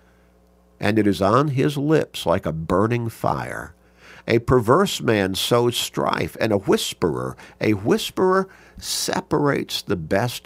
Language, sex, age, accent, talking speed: English, male, 50-69, American, 130 wpm